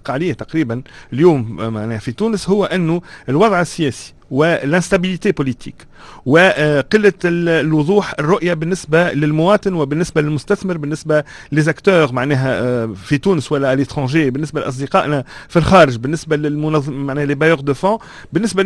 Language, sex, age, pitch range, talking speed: Arabic, male, 40-59, 145-195 Hz, 115 wpm